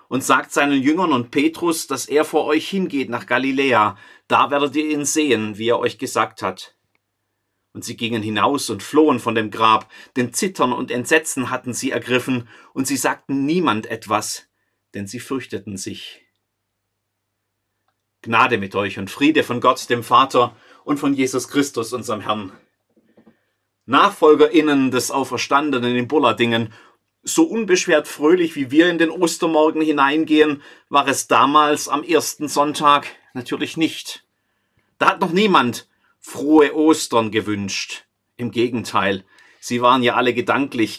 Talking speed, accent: 145 wpm, German